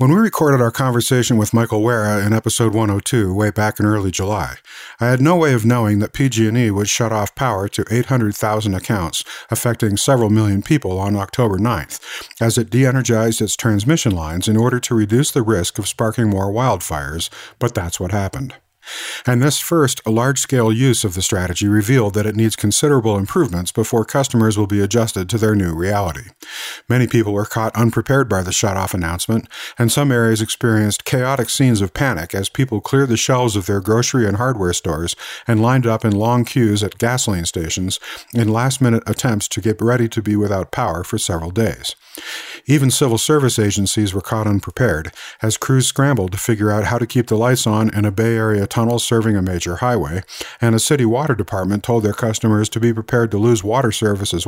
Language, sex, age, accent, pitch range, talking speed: English, male, 50-69, American, 105-120 Hz, 195 wpm